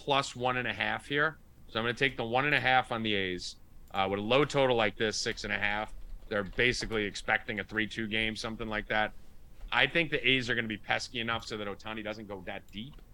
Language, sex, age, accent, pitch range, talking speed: English, male, 30-49, American, 95-125 Hz, 260 wpm